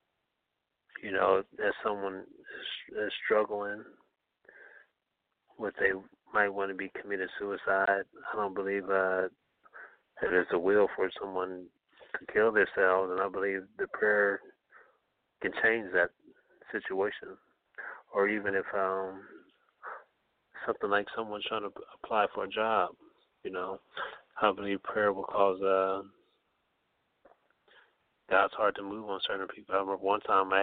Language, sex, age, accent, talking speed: English, male, 30-49, American, 135 wpm